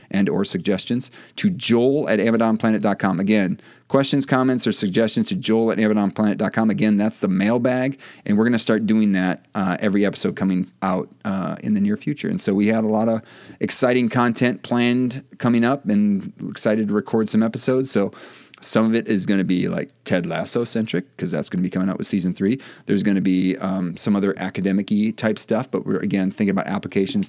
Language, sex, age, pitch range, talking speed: English, male, 30-49, 100-120 Hz, 205 wpm